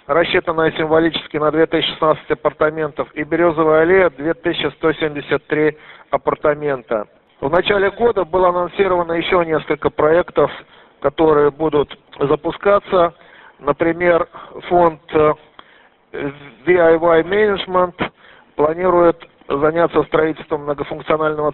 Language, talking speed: Russian, 80 wpm